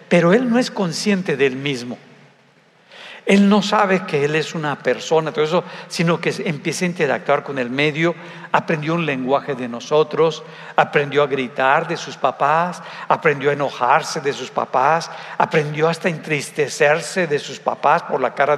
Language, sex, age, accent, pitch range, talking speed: Spanish, male, 60-79, Mexican, 145-185 Hz, 170 wpm